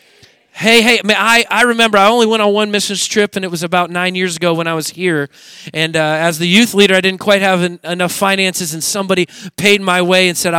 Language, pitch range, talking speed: English, 155-185 Hz, 255 wpm